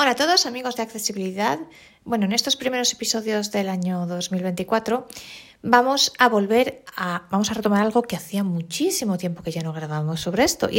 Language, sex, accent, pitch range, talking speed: Spanish, female, Spanish, 175-240 Hz, 185 wpm